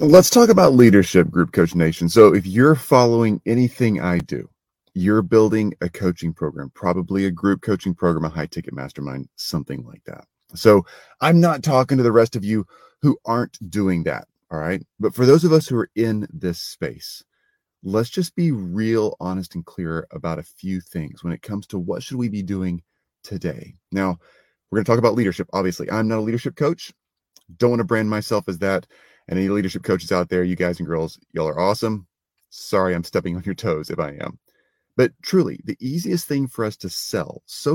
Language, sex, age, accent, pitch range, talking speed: English, male, 30-49, American, 90-135 Hz, 205 wpm